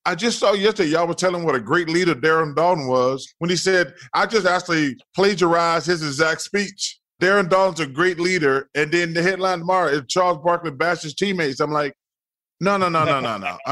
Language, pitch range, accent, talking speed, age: English, 150-190 Hz, American, 205 wpm, 30-49